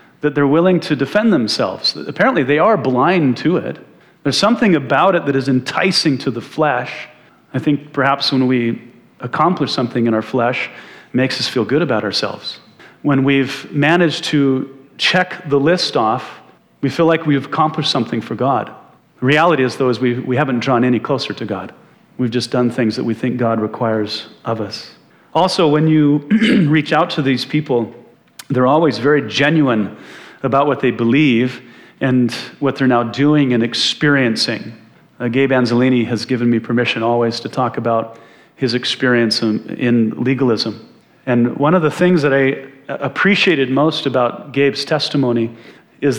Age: 40-59